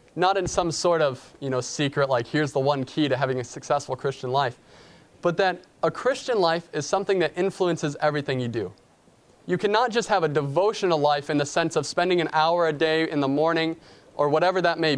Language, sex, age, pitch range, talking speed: English, male, 20-39, 145-190 Hz, 215 wpm